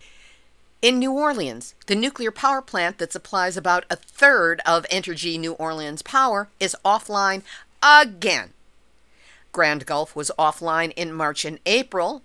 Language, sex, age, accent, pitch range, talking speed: English, female, 50-69, American, 170-220 Hz, 135 wpm